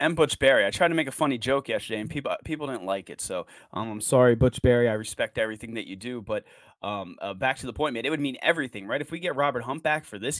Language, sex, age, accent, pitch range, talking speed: English, male, 30-49, American, 120-145 Hz, 290 wpm